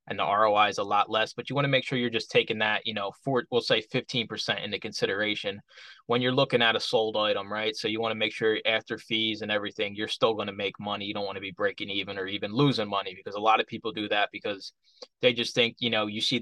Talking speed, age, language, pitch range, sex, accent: 275 wpm, 20-39, English, 105-125 Hz, male, American